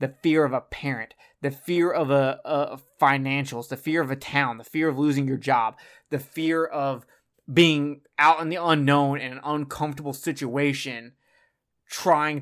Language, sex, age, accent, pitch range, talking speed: English, male, 20-39, American, 135-150 Hz, 170 wpm